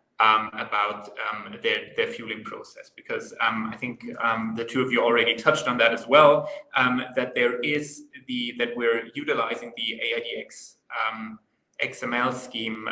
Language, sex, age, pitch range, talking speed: English, male, 20-39, 115-155 Hz, 165 wpm